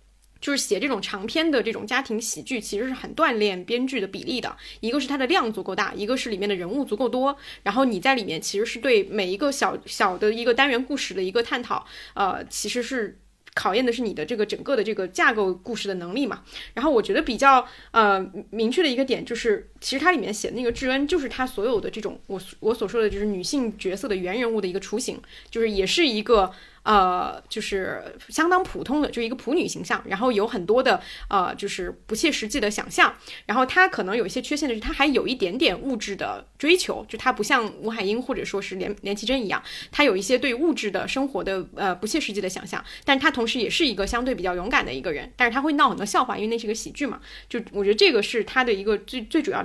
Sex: female